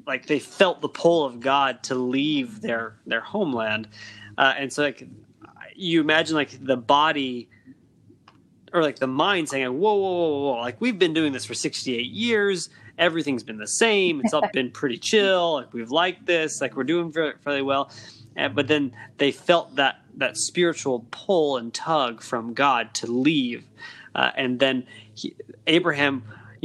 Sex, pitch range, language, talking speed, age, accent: male, 130-165 Hz, English, 180 wpm, 20-39, American